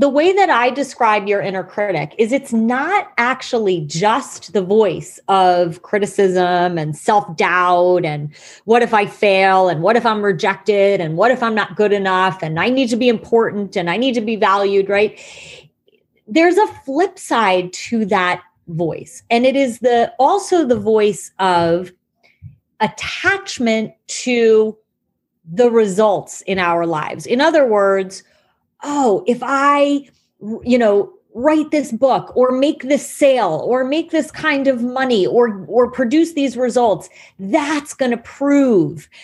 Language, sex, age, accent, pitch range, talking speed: English, female, 30-49, American, 195-265 Hz, 155 wpm